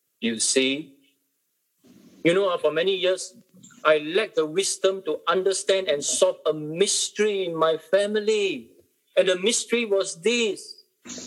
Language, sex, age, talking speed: English, male, 50-69, 135 wpm